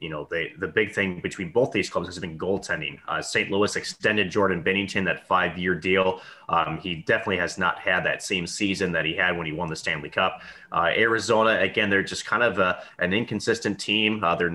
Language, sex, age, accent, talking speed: English, male, 30-49, American, 220 wpm